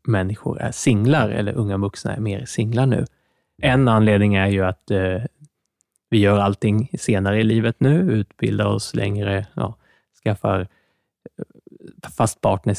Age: 20-39